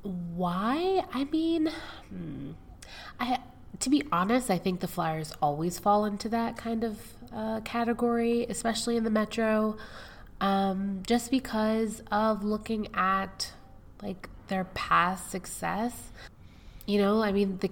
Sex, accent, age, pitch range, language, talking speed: female, American, 20-39, 175-230 Hz, English, 130 wpm